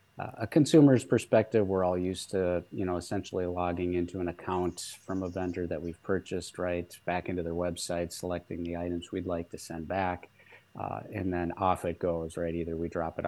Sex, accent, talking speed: male, American, 200 wpm